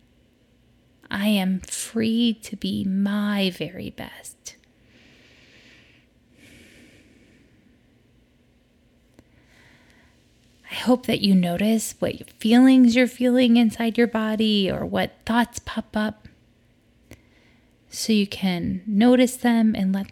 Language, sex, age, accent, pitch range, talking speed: English, female, 20-39, American, 195-230 Hz, 90 wpm